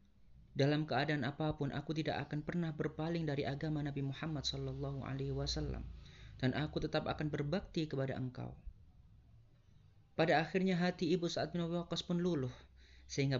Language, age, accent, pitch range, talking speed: Indonesian, 30-49, native, 125-160 Hz, 145 wpm